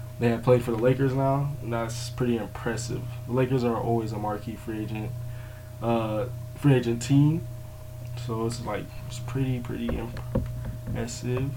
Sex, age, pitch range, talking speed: male, 20-39, 115-125 Hz, 155 wpm